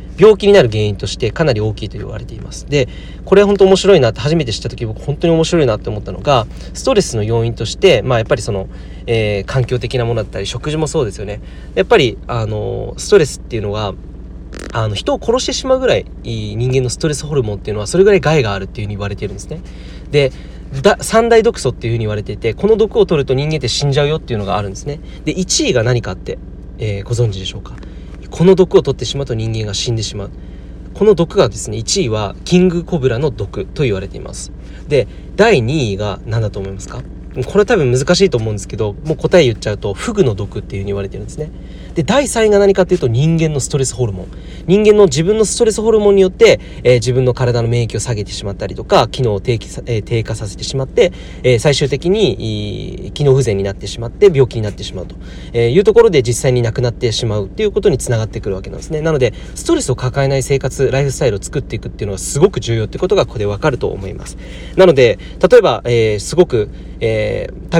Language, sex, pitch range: Japanese, male, 105-160 Hz